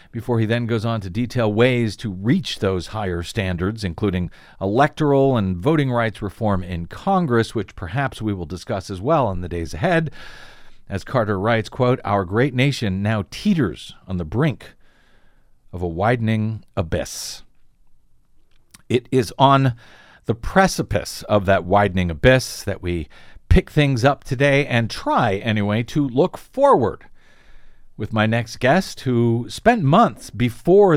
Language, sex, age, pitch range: English, male, 50-69, 105-145 Hz